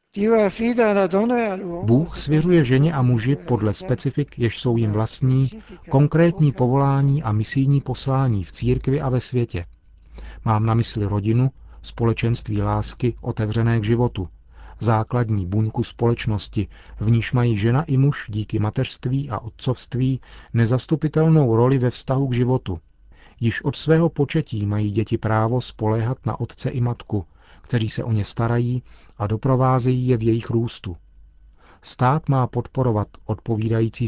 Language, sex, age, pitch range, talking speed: Czech, male, 40-59, 110-130 Hz, 135 wpm